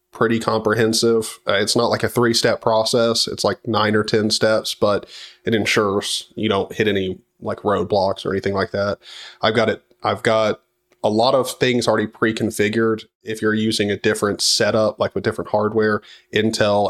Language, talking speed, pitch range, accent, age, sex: English, 180 wpm, 105-115 Hz, American, 20-39, male